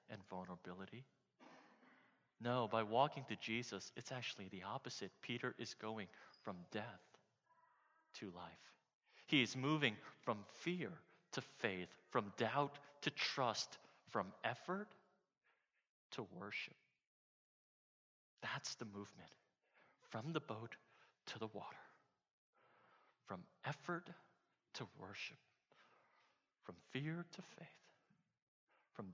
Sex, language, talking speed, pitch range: male, English, 105 wpm, 115-160 Hz